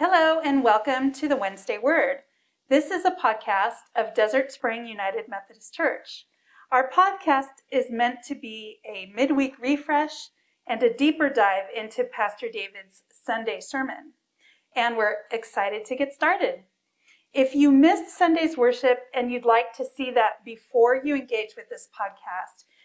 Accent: American